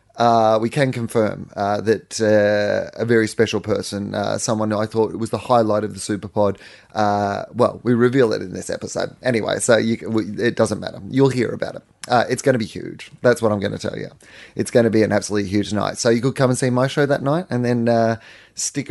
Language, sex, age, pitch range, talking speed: English, male, 20-39, 110-125 Hz, 240 wpm